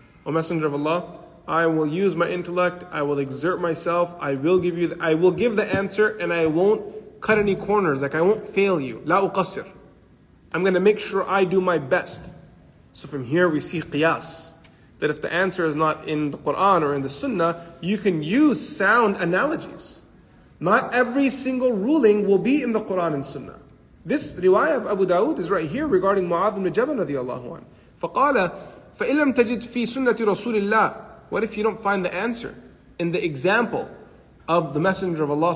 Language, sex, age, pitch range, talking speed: English, male, 30-49, 155-205 Hz, 195 wpm